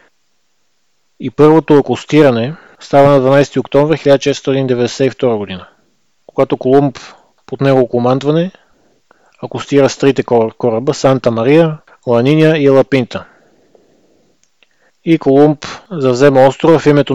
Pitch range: 125-145 Hz